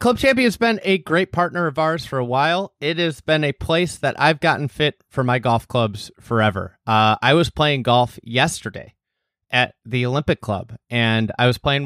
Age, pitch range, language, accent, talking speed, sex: 30-49, 120-155 Hz, English, American, 205 wpm, male